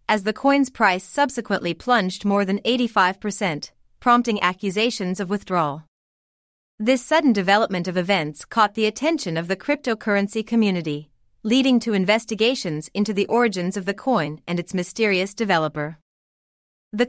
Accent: American